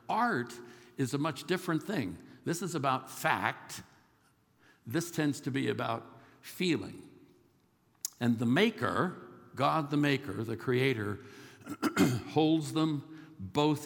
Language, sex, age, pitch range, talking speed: English, male, 60-79, 110-145 Hz, 115 wpm